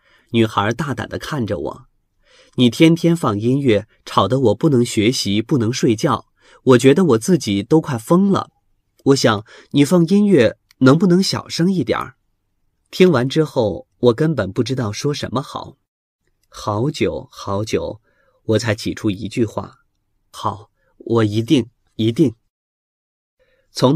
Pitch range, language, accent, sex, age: 105-140 Hz, Chinese, native, male, 30-49